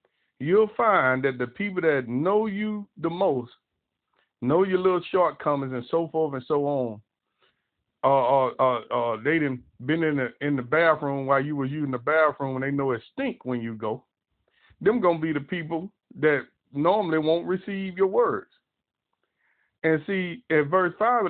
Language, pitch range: English, 135-185 Hz